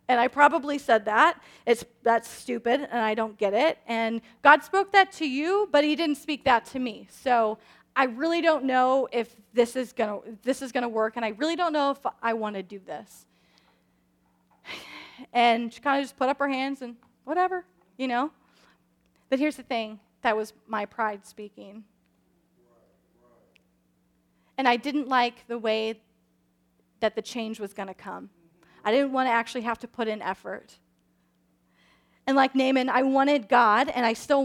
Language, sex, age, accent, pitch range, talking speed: English, female, 30-49, American, 220-280 Hz, 180 wpm